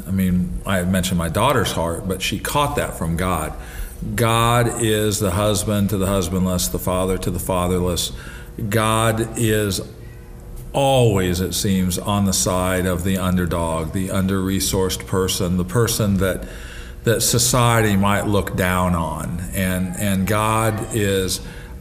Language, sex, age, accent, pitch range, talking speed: English, male, 50-69, American, 90-110 Hz, 145 wpm